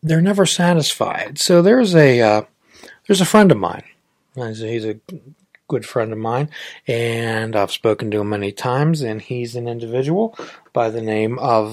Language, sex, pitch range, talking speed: English, male, 110-145 Hz, 180 wpm